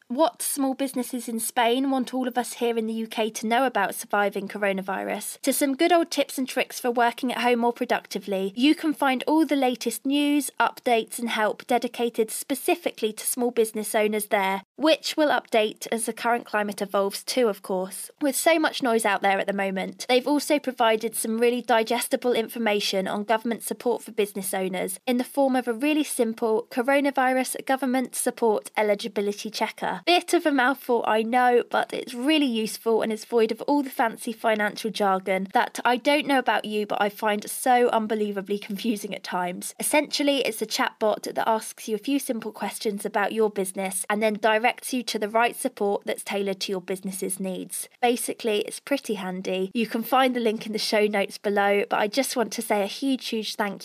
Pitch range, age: 210-255 Hz, 20-39